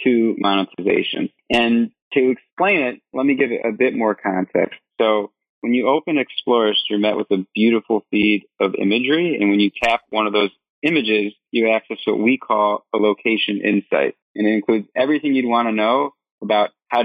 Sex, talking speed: male, 185 wpm